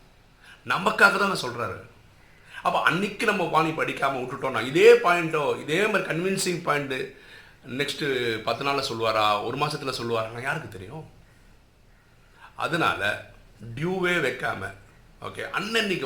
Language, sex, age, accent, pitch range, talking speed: Tamil, male, 50-69, native, 115-150 Hz, 110 wpm